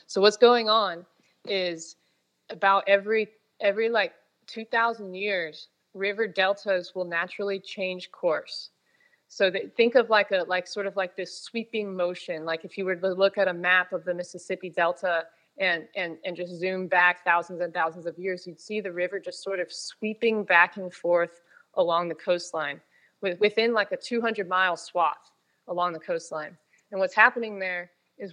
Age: 20-39